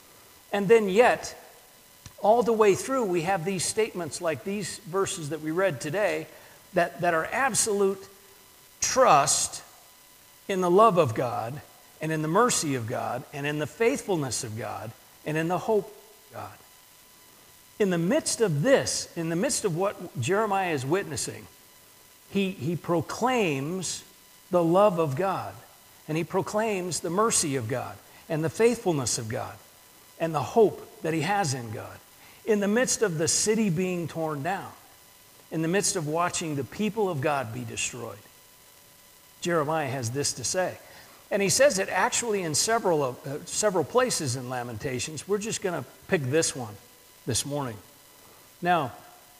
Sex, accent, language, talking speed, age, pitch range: male, American, English, 160 wpm, 50-69, 140-200 Hz